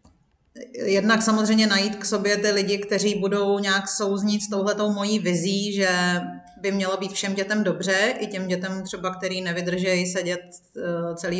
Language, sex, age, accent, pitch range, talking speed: Czech, female, 30-49, native, 190-215 Hz, 160 wpm